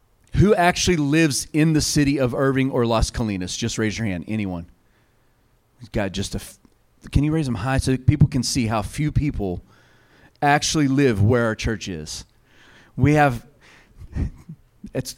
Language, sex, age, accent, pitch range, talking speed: English, male, 40-59, American, 115-155 Hz, 160 wpm